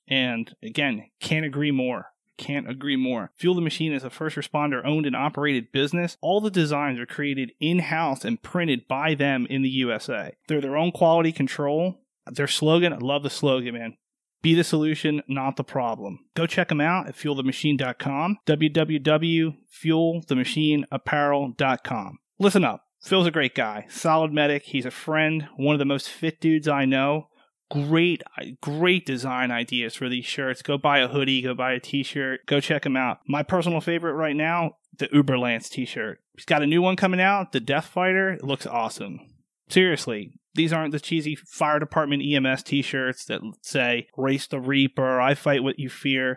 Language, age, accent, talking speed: English, 30-49, American, 175 wpm